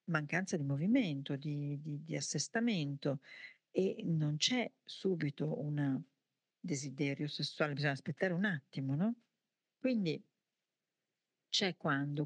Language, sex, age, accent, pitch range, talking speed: Italian, female, 50-69, native, 150-195 Hz, 110 wpm